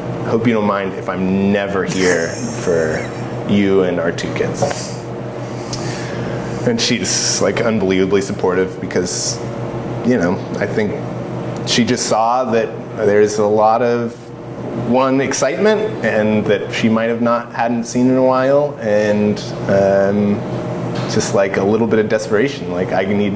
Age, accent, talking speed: 20-39, American, 145 wpm